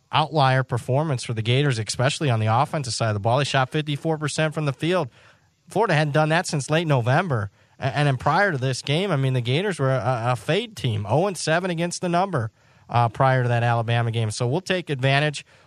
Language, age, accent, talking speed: English, 30-49, American, 215 wpm